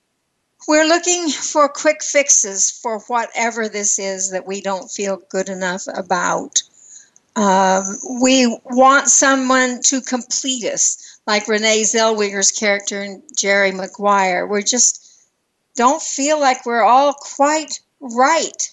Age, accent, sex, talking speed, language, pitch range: 60-79, American, female, 125 wpm, English, 205-275 Hz